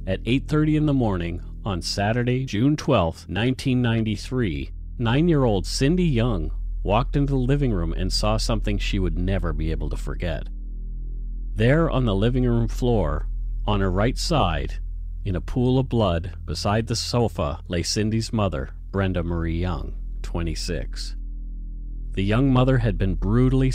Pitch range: 85-115 Hz